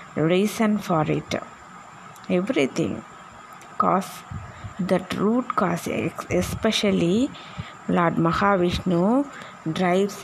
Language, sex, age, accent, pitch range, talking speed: Tamil, female, 20-39, native, 180-210 Hz, 70 wpm